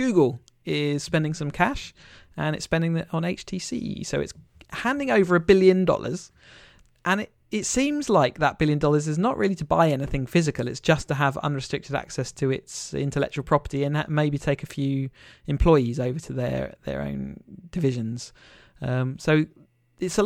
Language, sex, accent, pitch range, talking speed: English, male, British, 130-165 Hz, 180 wpm